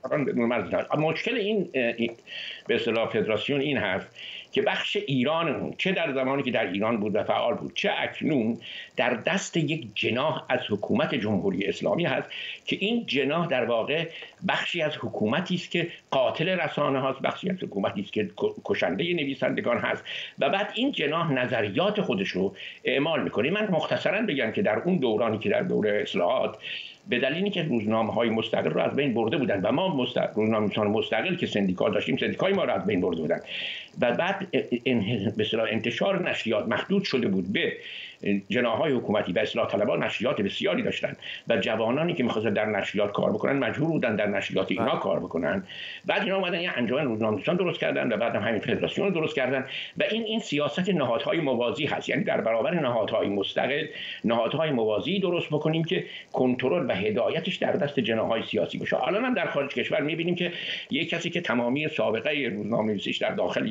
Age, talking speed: 60-79, 175 wpm